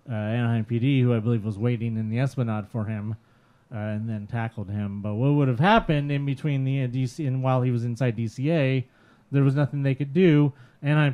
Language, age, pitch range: English, 30-49, 115-140 Hz